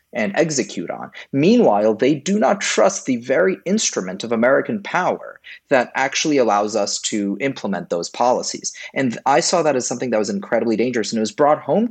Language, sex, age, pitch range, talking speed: English, male, 30-49, 110-170 Hz, 185 wpm